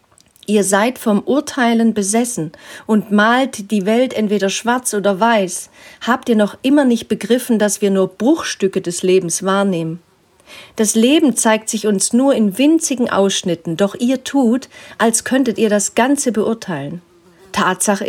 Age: 40-59